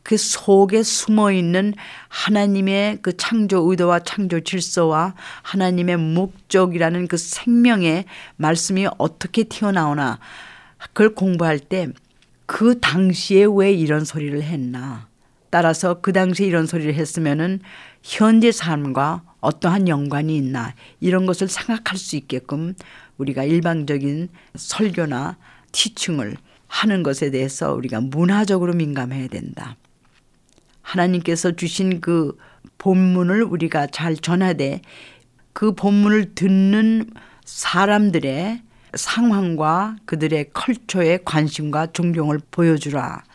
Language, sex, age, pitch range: Korean, female, 40-59, 150-195 Hz